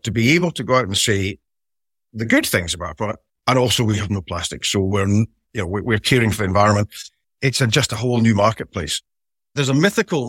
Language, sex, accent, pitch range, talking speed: English, male, British, 105-130 Hz, 225 wpm